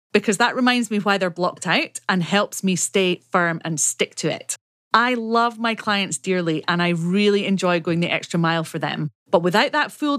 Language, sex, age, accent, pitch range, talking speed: English, female, 30-49, British, 170-235 Hz, 210 wpm